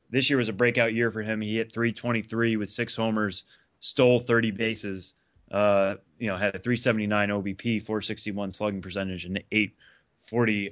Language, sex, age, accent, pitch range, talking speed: English, male, 30-49, American, 100-115 Hz, 170 wpm